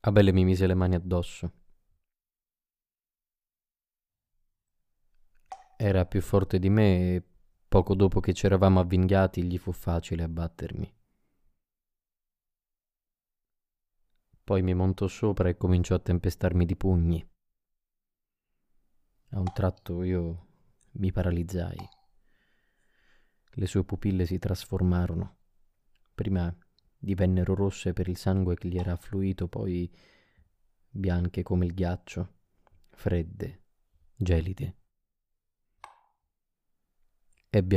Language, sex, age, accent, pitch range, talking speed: Italian, male, 20-39, native, 90-100 Hz, 95 wpm